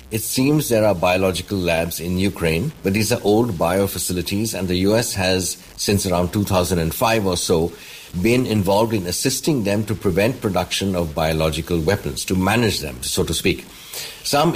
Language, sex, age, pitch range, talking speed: English, male, 50-69, 90-105 Hz, 170 wpm